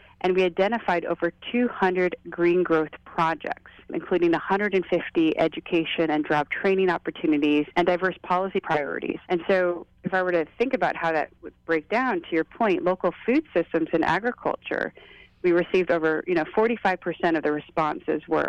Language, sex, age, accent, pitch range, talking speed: English, female, 30-49, American, 160-190 Hz, 160 wpm